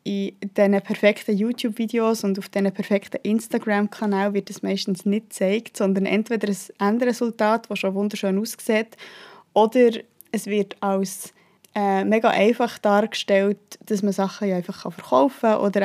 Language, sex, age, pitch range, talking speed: German, female, 20-39, 200-230 Hz, 150 wpm